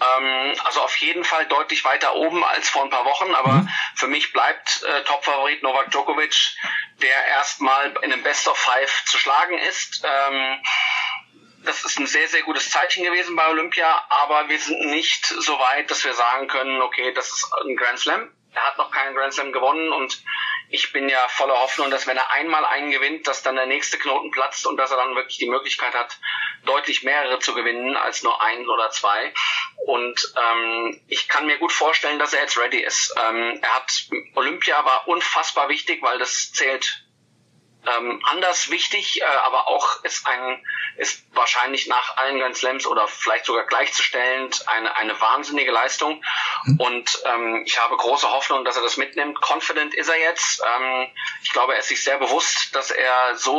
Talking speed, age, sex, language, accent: 185 wpm, 40-59, male, German, German